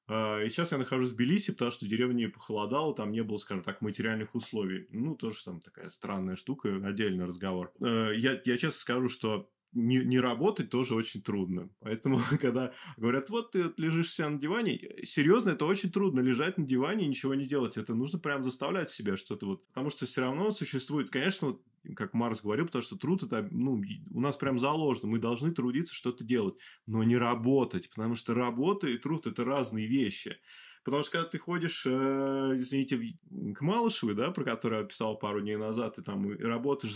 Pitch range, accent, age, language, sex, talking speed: 110-140 Hz, native, 20-39, Russian, male, 200 wpm